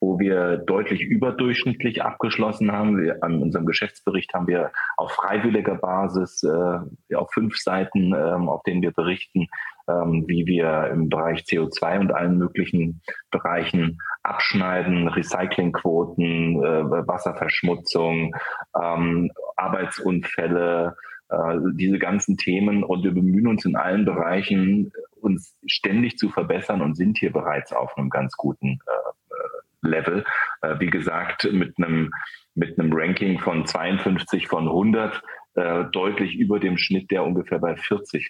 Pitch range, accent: 85-95 Hz, German